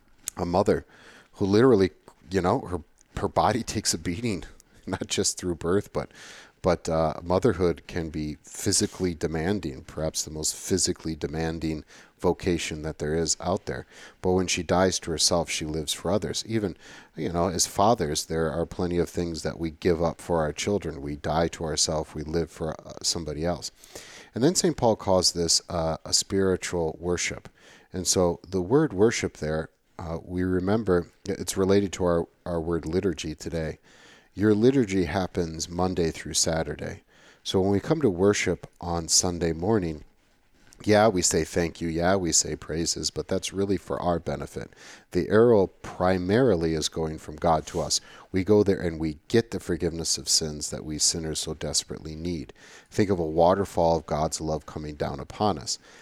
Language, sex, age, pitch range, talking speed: English, male, 40-59, 80-95 Hz, 175 wpm